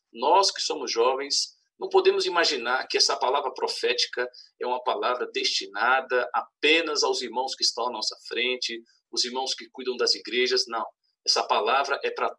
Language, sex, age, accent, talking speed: Portuguese, male, 50-69, Brazilian, 165 wpm